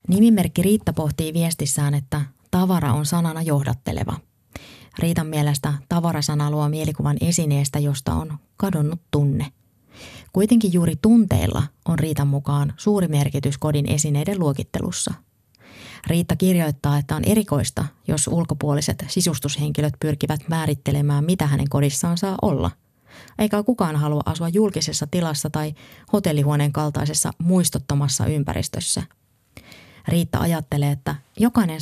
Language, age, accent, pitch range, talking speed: Finnish, 20-39, native, 145-185 Hz, 115 wpm